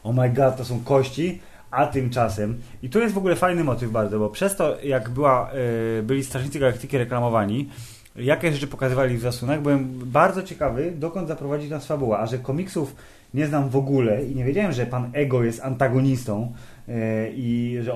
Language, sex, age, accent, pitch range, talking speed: Polish, male, 20-39, native, 120-140 Hz, 175 wpm